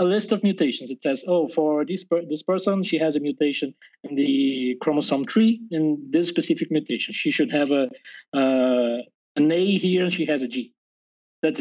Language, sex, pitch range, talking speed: English, male, 140-180 Hz, 195 wpm